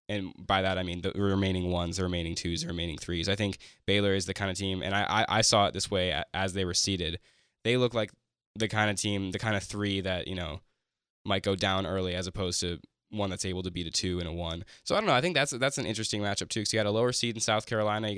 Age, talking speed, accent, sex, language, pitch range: 10-29, 285 wpm, American, male, English, 95-110 Hz